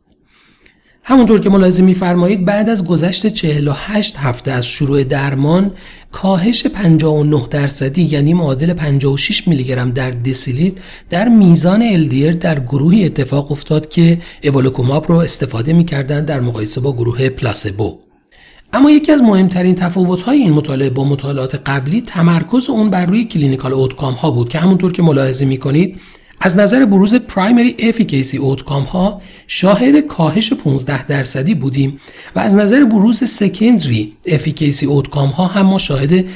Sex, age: male, 40-59